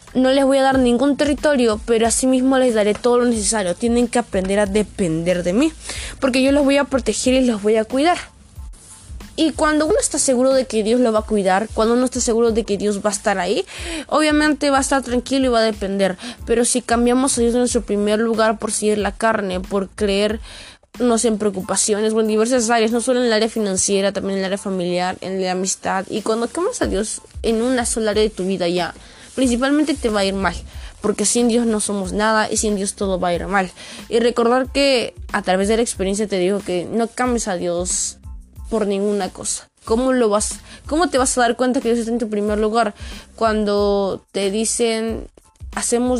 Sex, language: female, Spanish